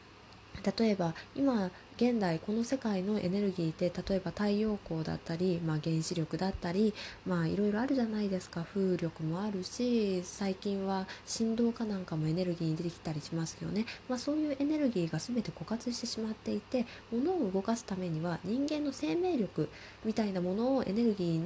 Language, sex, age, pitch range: Japanese, female, 20-39, 175-255 Hz